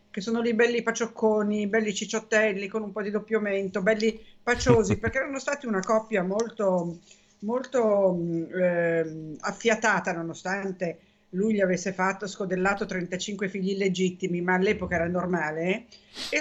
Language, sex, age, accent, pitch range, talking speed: Italian, female, 50-69, native, 175-215 Hz, 135 wpm